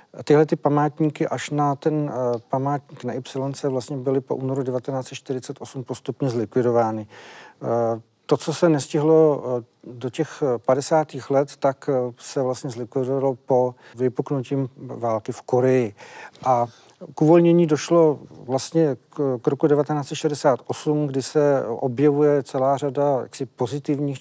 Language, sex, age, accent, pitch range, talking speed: Czech, male, 40-59, native, 130-145 Hz, 130 wpm